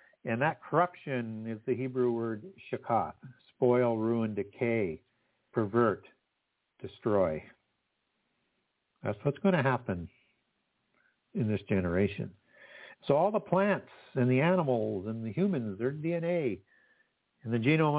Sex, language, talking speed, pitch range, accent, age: male, English, 120 wpm, 100-125 Hz, American, 60-79